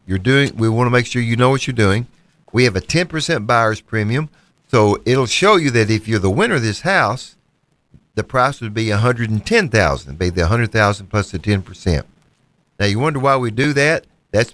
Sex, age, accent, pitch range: male, 50-69, American, 105-140 Hz